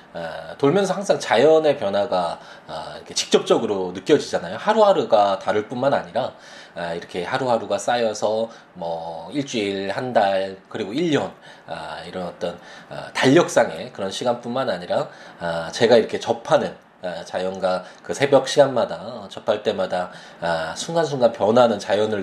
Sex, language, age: male, Korean, 20-39